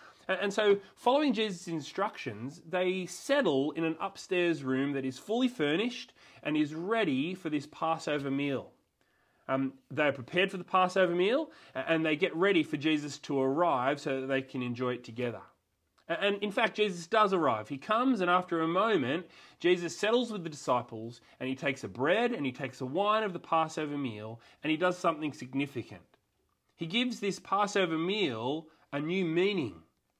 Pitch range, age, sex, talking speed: 145-200 Hz, 30-49, male, 175 wpm